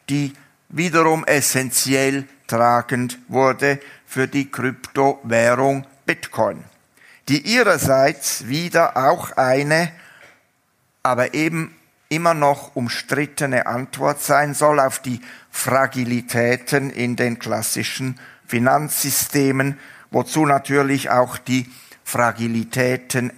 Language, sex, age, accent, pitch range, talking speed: German, male, 60-79, German, 120-145 Hz, 85 wpm